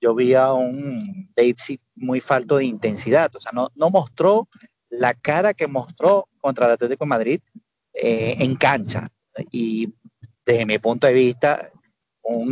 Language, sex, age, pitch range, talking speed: Spanish, male, 30-49, 120-150 Hz, 160 wpm